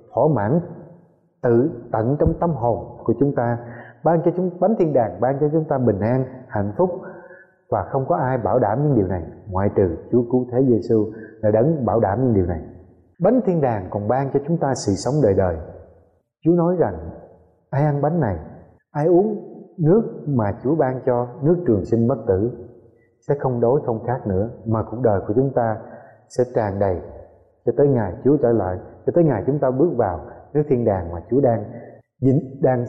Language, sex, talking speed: Vietnamese, male, 205 wpm